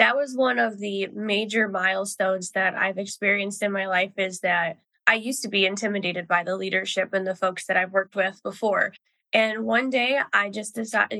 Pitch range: 210-275 Hz